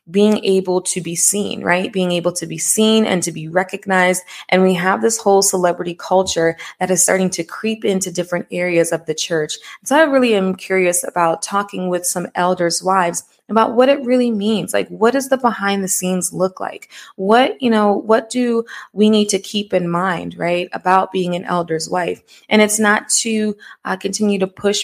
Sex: female